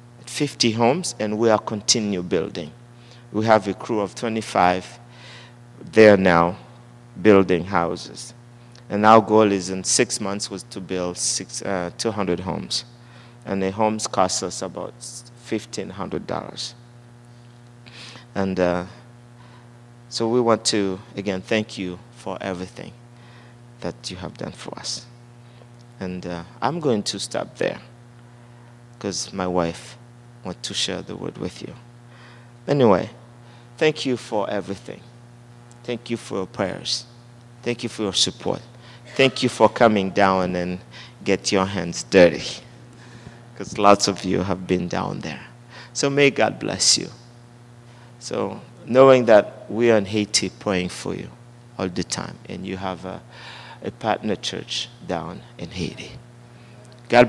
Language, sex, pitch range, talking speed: English, male, 100-120 Hz, 140 wpm